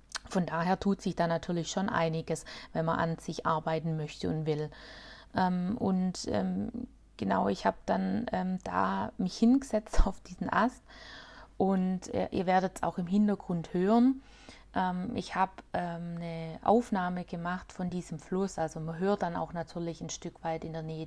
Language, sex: German, female